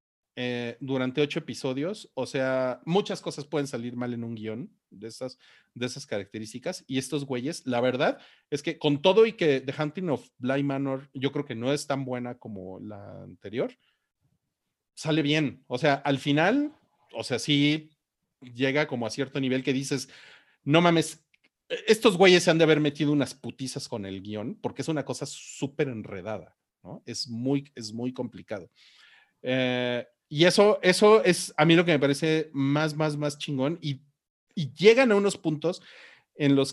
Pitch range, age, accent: 130-165 Hz, 40-59, Mexican